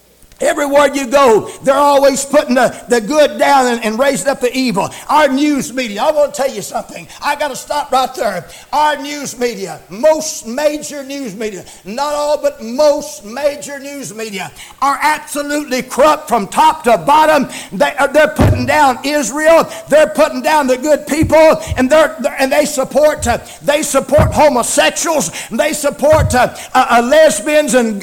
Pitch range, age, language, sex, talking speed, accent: 240-305 Hz, 60-79, English, male, 165 wpm, American